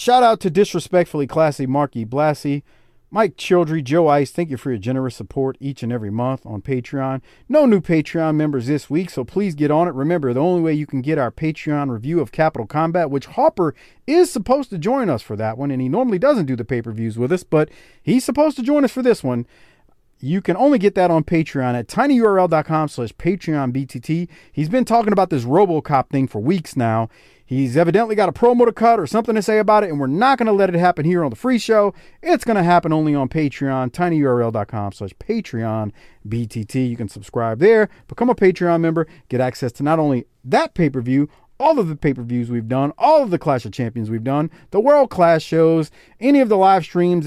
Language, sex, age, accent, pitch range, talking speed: English, male, 40-59, American, 125-195 Hz, 220 wpm